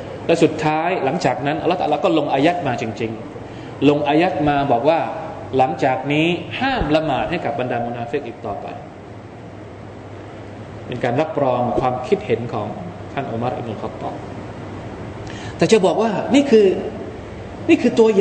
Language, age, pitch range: Thai, 20-39, 120-195 Hz